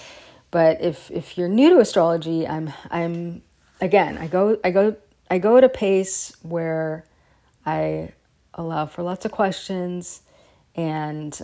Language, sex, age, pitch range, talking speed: English, female, 30-49, 155-200 Hz, 140 wpm